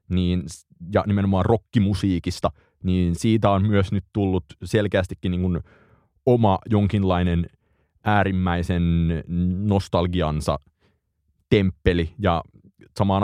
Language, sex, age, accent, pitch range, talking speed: Finnish, male, 30-49, native, 85-100 Hz, 90 wpm